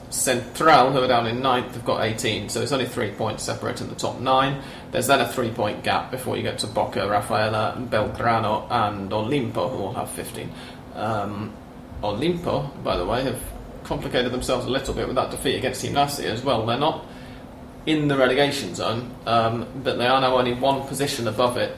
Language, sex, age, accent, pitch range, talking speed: English, male, 30-49, British, 115-130 Hz, 200 wpm